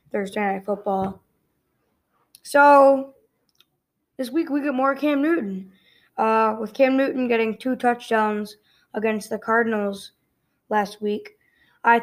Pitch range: 205-235 Hz